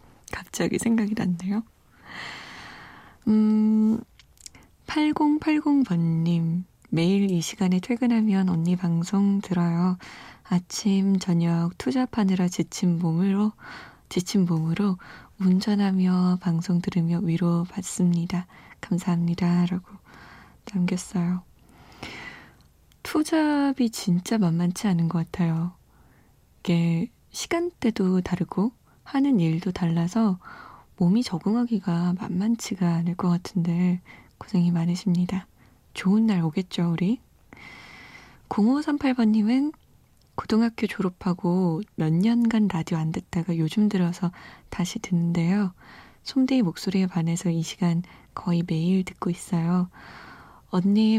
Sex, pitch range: female, 175-210 Hz